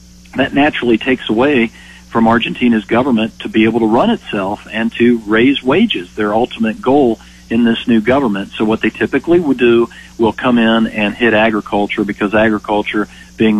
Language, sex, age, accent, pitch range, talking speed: English, male, 40-59, American, 100-115 Hz, 170 wpm